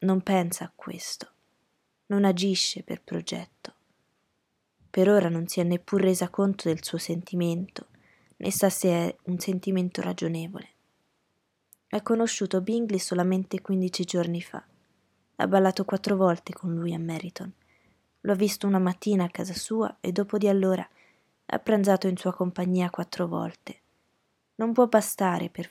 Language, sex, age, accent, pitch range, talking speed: Italian, female, 20-39, native, 175-205 Hz, 145 wpm